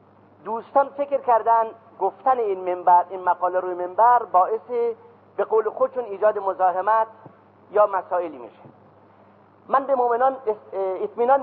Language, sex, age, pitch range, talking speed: Persian, male, 40-59, 175-255 Hz, 110 wpm